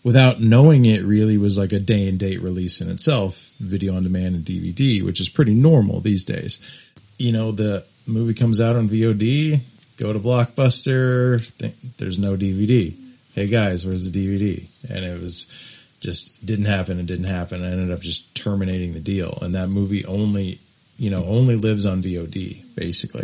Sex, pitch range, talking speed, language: male, 95-120 Hz, 180 wpm, English